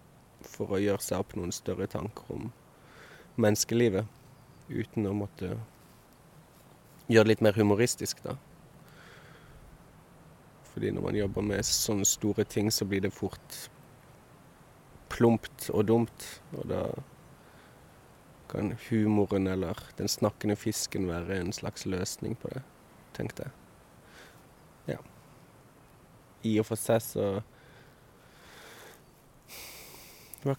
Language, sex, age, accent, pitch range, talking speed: Swedish, male, 20-39, native, 105-120 Hz, 105 wpm